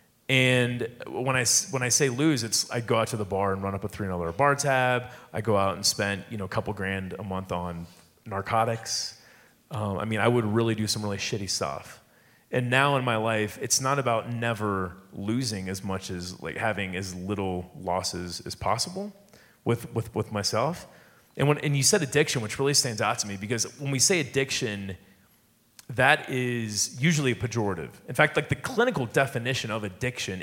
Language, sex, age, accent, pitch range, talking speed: English, male, 30-49, American, 100-135 Hz, 195 wpm